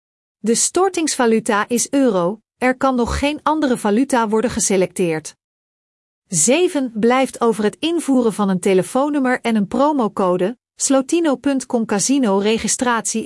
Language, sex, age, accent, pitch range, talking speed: Dutch, female, 40-59, Dutch, 205-265 Hz, 120 wpm